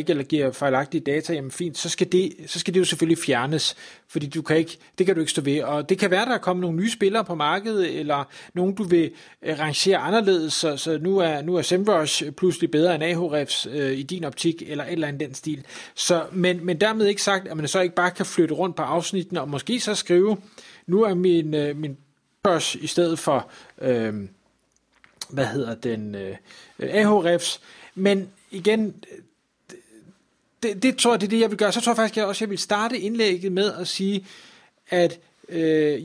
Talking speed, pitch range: 215 wpm, 155-200 Hz